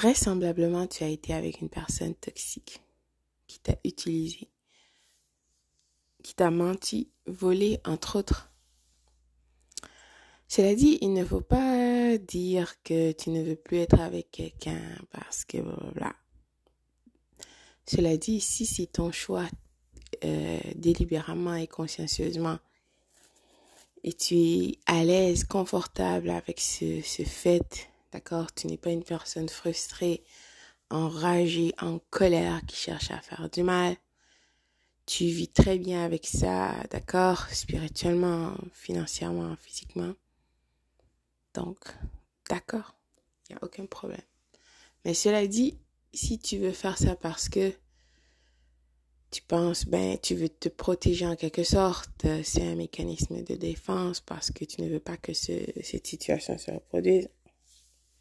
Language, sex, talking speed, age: French, female, 130 wpm, 20-39